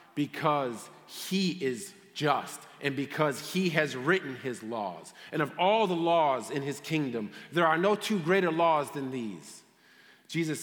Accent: American